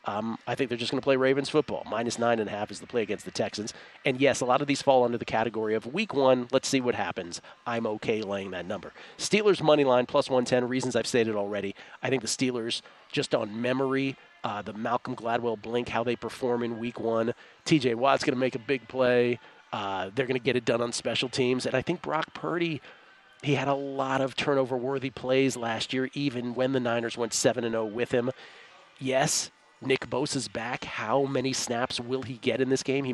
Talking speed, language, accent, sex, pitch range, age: 225 wpm, English, American, male, 120-140 Hz, 40-59